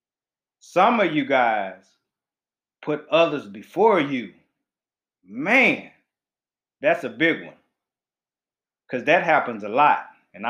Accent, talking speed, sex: American, 110 wpm, male